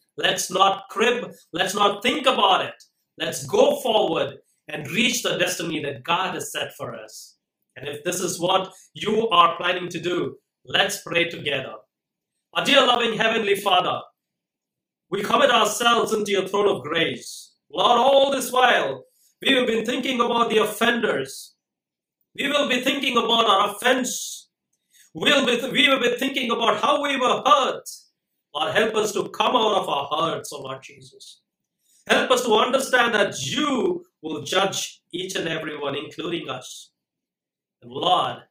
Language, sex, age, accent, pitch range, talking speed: English, male, 30-49, Indian, 170-245 Hz, 160 wpm